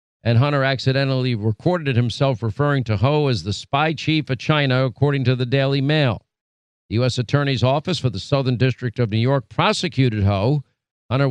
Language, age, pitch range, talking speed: English, 50-69, 120-140 Hz, 175 wpm